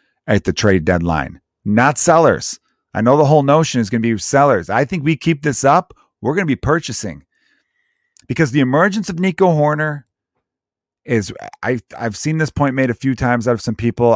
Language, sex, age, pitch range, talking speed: English, male, 40-59, 105-150 Hz, 200 wpm